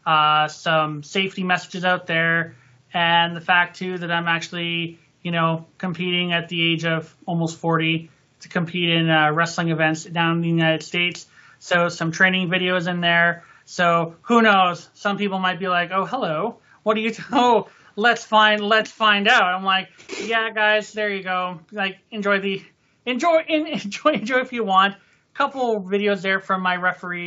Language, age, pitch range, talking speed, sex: English, 30-49, 165-200 Hz, 180 wpm, male